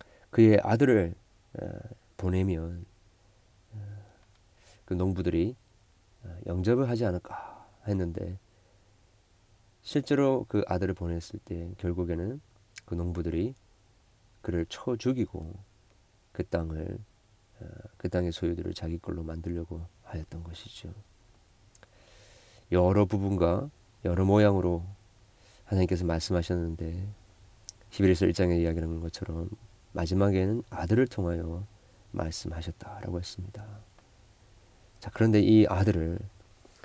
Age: 40-59